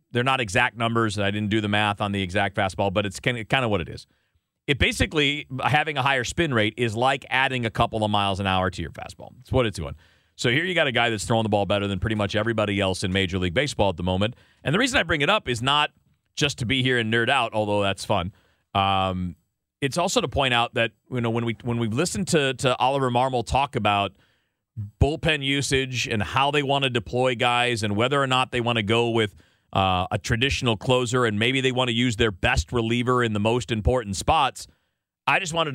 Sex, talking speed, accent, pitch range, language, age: male, 245 wpm, American, 105-130 Hz, English, 40-59